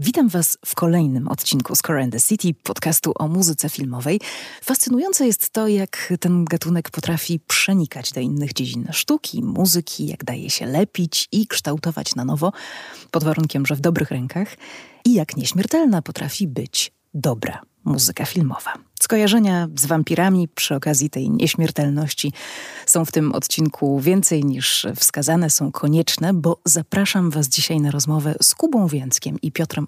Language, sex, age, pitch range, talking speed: Polish, female, 30-49, 145-190 Hz, 150 wpm